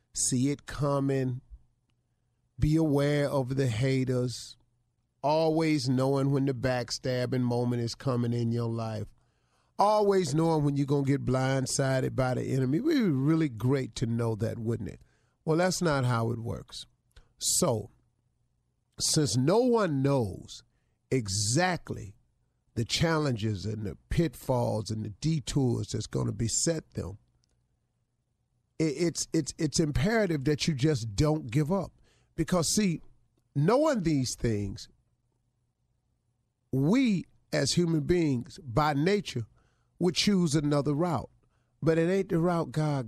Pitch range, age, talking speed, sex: 120-160 Hz, 40-59, 135 wpm, male